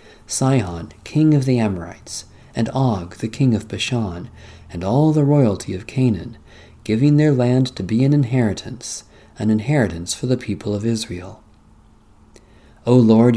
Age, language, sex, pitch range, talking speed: 40-59, English, male, 105-130 Hz, 150 wpm